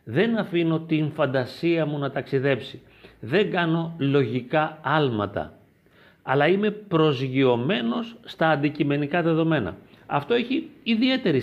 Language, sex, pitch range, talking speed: Greek, male, 125-165 Hz, 105 wpm